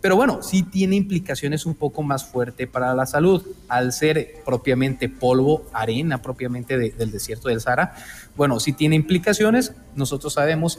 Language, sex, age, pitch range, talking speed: Spanish, male, 30-49, 120-145 Hz, 160 wpm